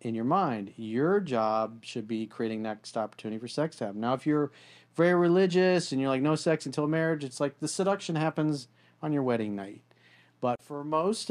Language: English